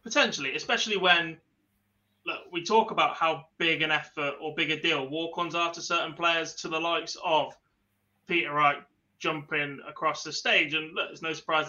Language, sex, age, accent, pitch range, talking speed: English, male, 20-39, British, 145-170 Hz, 175 wpm